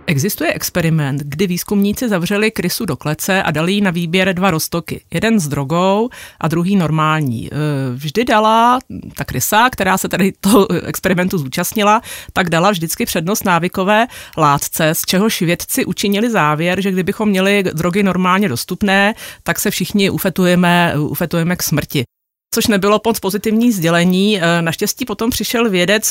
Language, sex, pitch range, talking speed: Czech, female, 170-215 Hz, 145 wpm